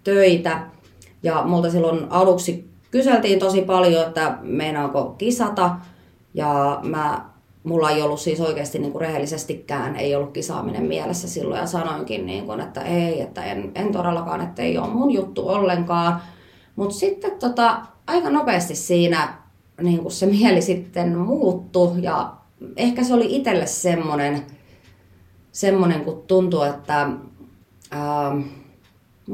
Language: Finnish